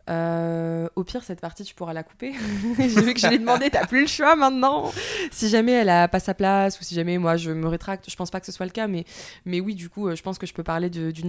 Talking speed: 290 wpm